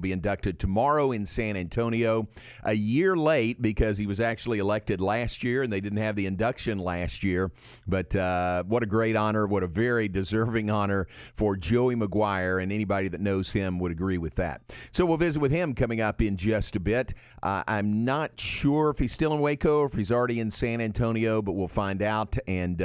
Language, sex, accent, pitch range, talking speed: English, male, American, 100-125 Hz, 205 wpm